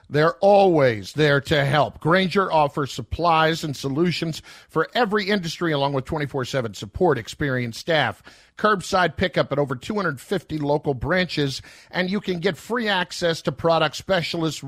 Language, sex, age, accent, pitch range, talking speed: English, male, 50-69, American, 145-190 Hz, 145 wpm